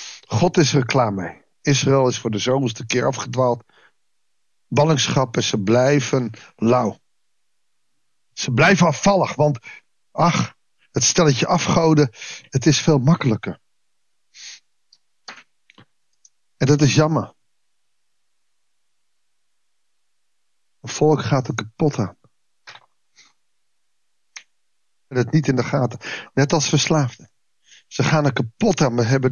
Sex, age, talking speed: male, 50-69, 110 wpm